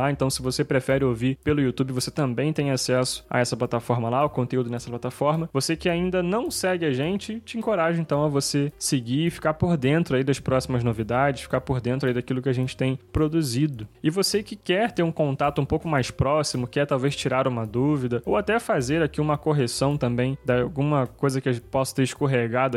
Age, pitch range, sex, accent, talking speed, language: 10-29, 125-155 Hz, male, Brazilian, 215 wpm, Portuguese